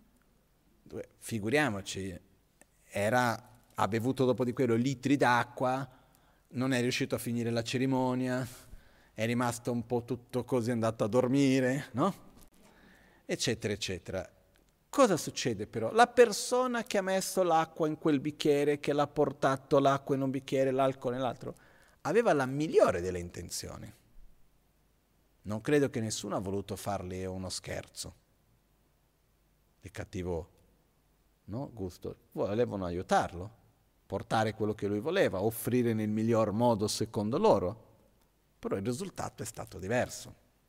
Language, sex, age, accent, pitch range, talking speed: Italian, male, 40-59, native, 105-135 Hz, 125 wpm